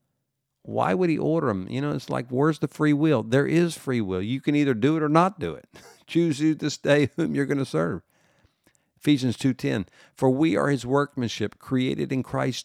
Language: English